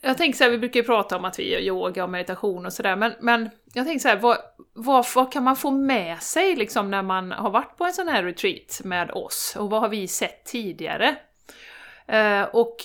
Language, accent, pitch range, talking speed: Swedish, native, 195-245 Hz, 240 wpm